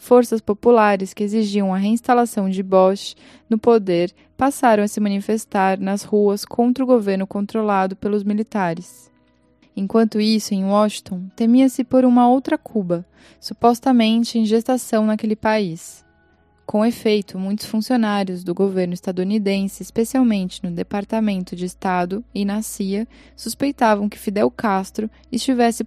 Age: 10-29